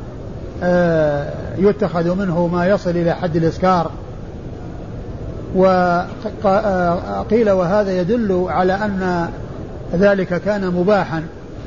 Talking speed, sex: 75 wpm, male